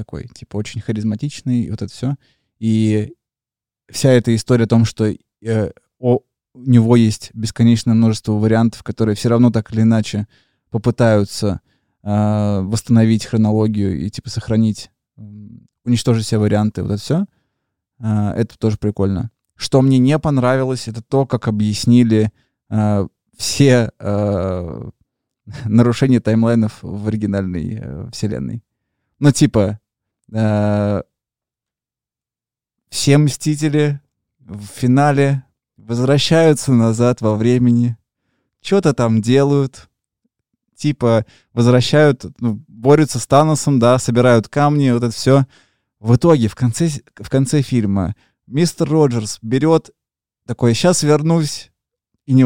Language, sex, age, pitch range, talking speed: Russian, male, 20-39, 110-130 Hz, 115 wpm